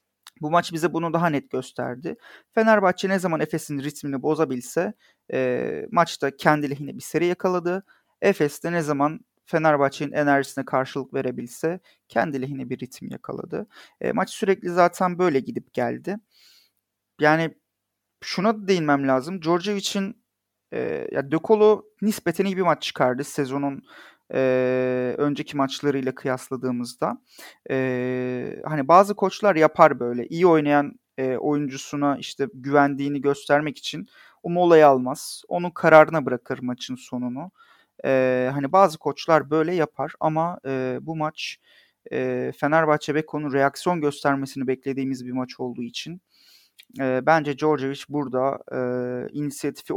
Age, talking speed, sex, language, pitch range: 40-59, 125 wpm, male, Turkish, 130-170 Hz